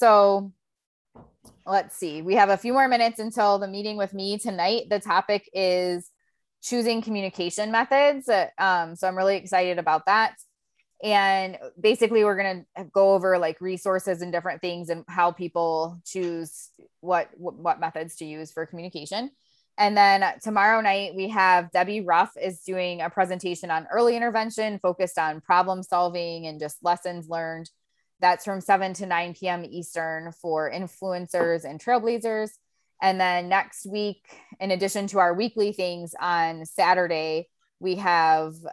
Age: 20-39